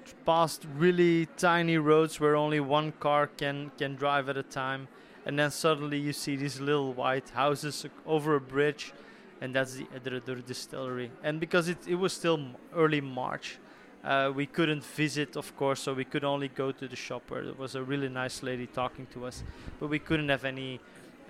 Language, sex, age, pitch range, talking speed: English, male, 20-39, 130-150 Hz, 200 wpm